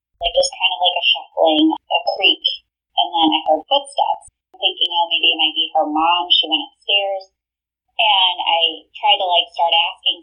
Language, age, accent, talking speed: English, 20-39, American, 195 wpm